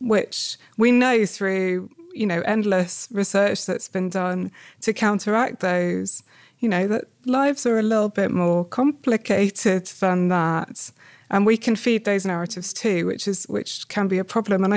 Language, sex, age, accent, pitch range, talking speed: English, female, 20-39, British, 190-220 Hz, 165 wpm